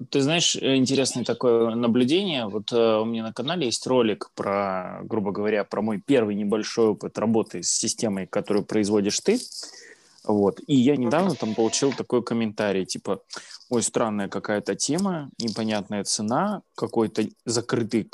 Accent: native